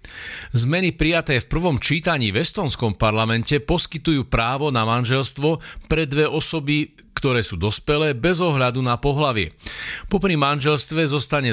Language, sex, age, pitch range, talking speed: Slovak, male, 50-69, 105-145 Hz, 130 wpm